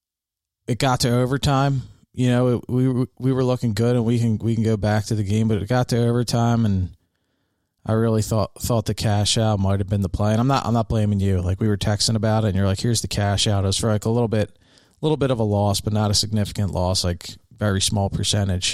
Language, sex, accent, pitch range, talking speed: English, male, American, 100-120 Hz, 265 wpm